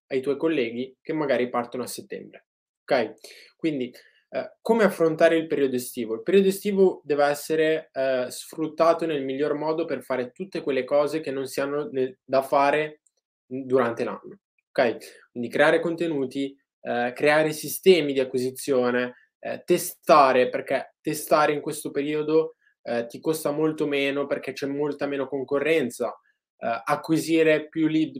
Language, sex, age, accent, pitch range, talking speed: Italian, male, 20-39, native, 130-165 Hz, 150 wpm